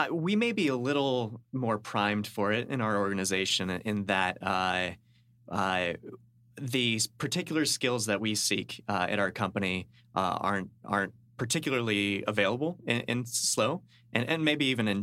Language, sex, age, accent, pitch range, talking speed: English, male, 30-49, American, 95-120 Hz, 155 wpm